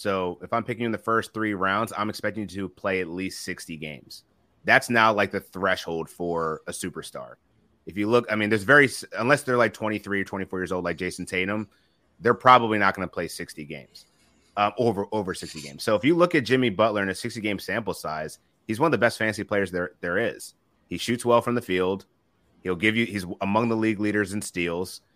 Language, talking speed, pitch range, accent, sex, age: English, 225 wpm, 95-115 Hz, American, male, 30-49